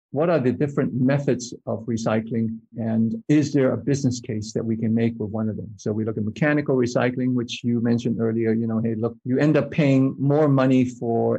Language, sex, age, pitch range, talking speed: English, male, 50-69, 115-135 Hz, 220 wpm